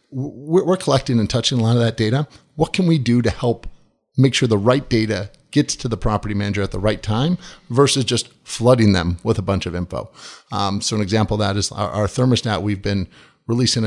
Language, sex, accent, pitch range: English, male, American, 105-130 Hz